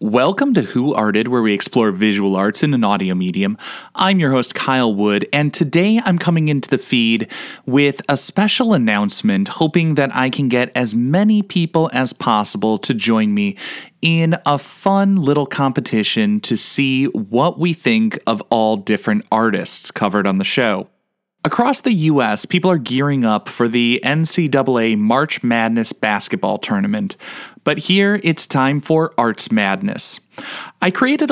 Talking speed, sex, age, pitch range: 160 wpm, male, 30-49, 120-195 Hz